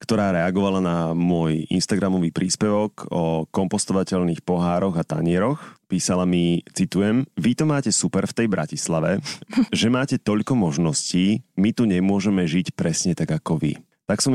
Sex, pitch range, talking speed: male, 80-100 Hz, 145 wpm